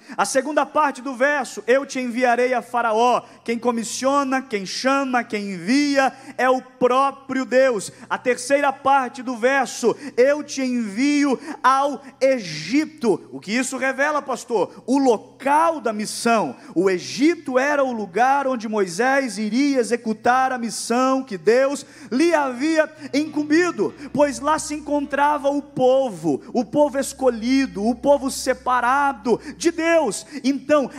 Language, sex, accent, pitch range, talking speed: Portuguese, male, Brazilian, 240-285 Hz, 140 wpm